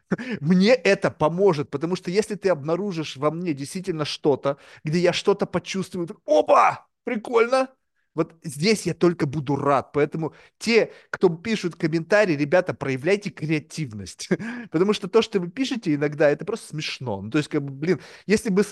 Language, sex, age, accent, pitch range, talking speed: Russian, male, 30-49, native, 135-190 Hz, 165 wpm